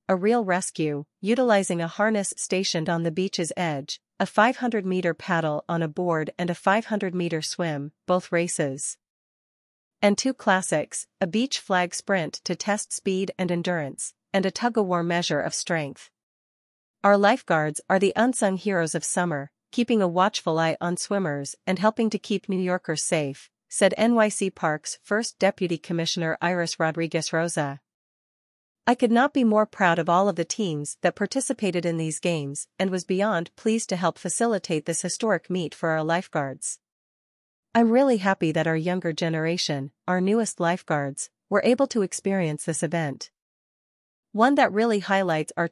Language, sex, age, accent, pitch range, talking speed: English, female, 40-59, American, 165-205 Hz, 165 wpm